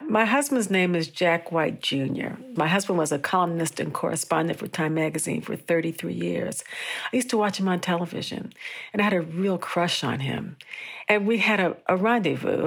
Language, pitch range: English, 160-200 Hz